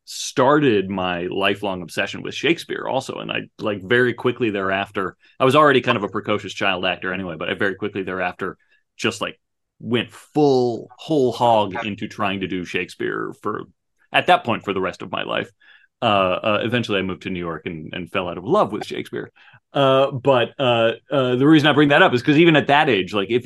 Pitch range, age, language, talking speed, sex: 100-135 Hz, 30-49, English, 210 wpm, male